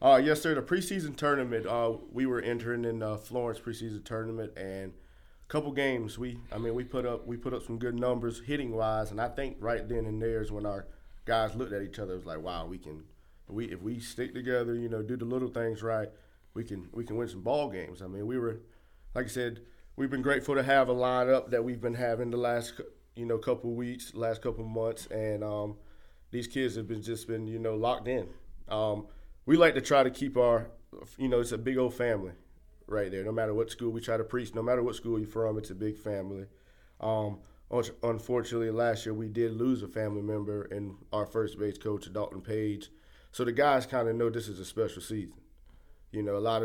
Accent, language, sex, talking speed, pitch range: American, English, male, 230 wpm, 105-120 Hz